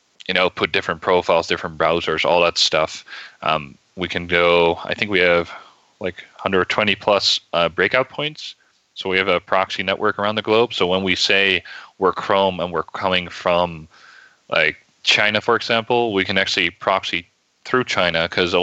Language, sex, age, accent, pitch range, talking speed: English, male, 20-39, American, 85-100 Hz, 175 wpm